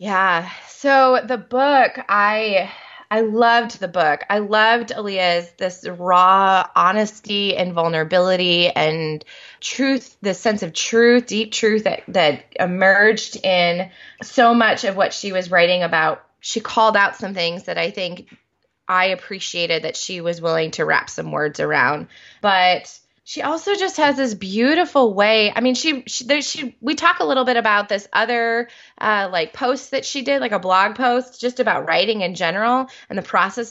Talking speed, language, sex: 170 wpm, English, female